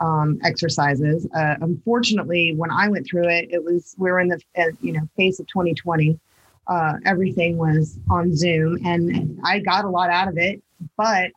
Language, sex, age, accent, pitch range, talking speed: English, female, 20-39, American, 170-210 Hz, 180 wpm